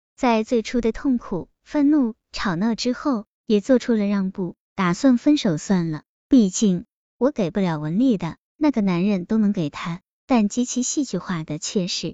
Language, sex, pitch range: Chinese, male, 185-250 Hz